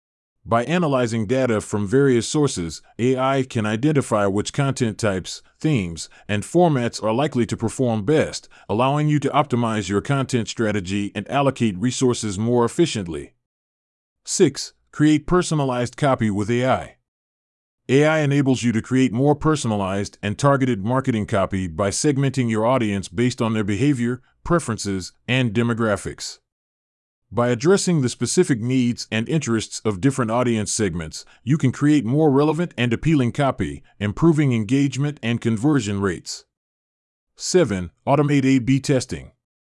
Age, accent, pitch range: 30-49, American, 105-140 Hz